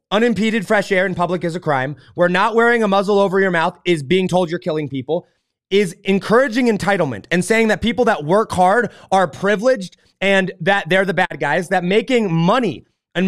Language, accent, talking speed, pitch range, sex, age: English, American, 200 wpm, 180-225 Hz, male, 30-49